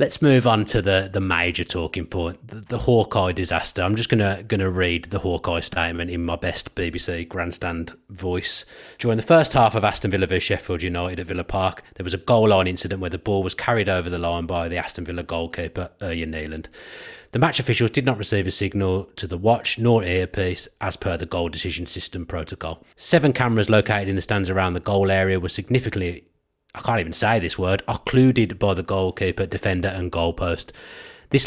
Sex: male